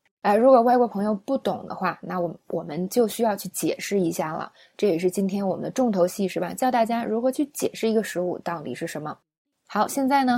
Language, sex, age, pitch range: Chinese, female, 20-39, 185-250 Hz